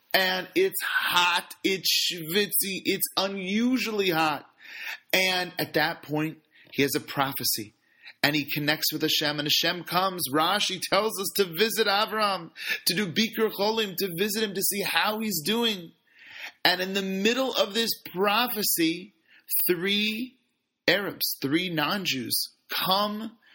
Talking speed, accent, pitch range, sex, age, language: 140 wpm, American, 160-200 Hz, male, 30-49, English